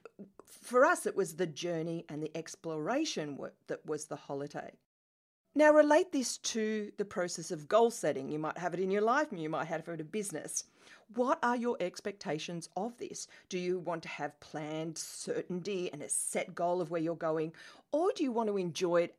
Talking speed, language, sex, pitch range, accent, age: 200 wpm, English, female, 155-225 Hz, Australian, 40-59